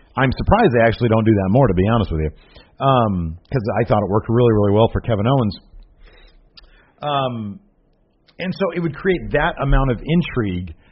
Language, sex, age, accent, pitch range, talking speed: English, male, 40-59, American, 105-135 Hz, 190 wpm